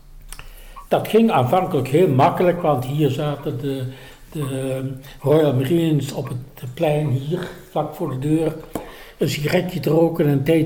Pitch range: 140-185 Hz